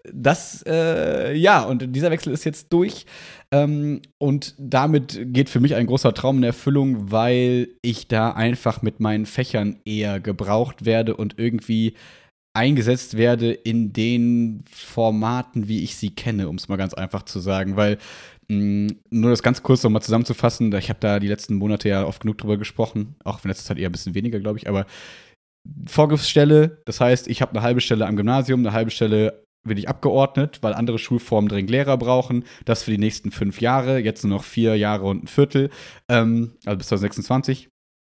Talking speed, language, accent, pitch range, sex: 185 wpm, German, German, 105-130 Hz, male